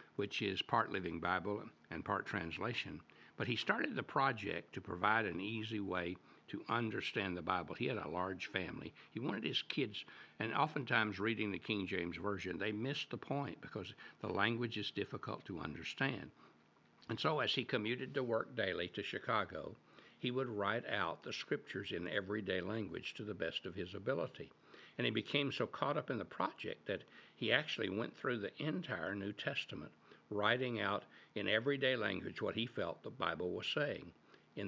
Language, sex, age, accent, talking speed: English, male, 60-79, American, 180 wpm